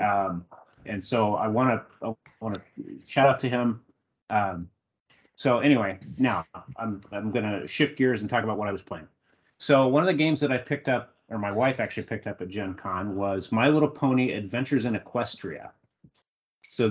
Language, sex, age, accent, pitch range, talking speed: English, male, 30-49, American, 105-130 Hz, 195 wpm